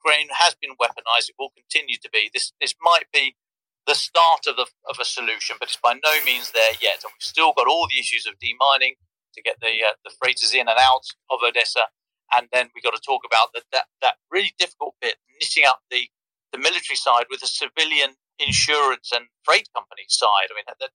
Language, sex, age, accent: English, male, 40-59, British